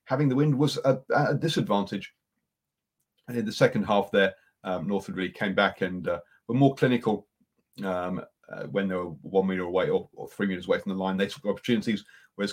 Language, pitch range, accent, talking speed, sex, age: English, 95-130 Hz, British, 205 wpm, male, 40-59